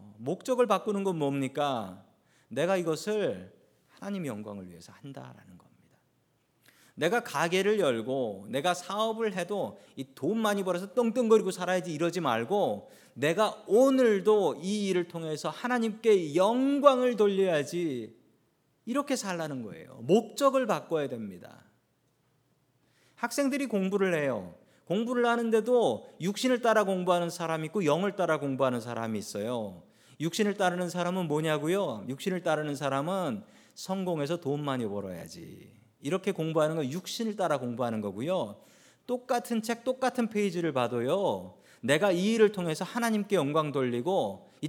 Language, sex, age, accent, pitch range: Korean, male, 40-59, native, 140-210 Hz